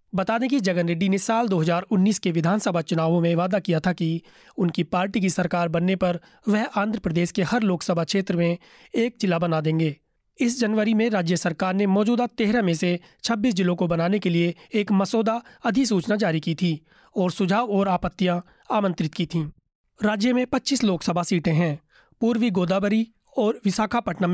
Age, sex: 30-49, male